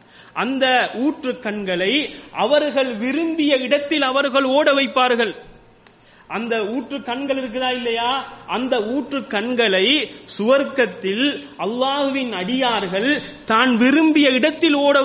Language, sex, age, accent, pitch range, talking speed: Tamil, male, 30-49, native, 200-280 Hz, 85 wpm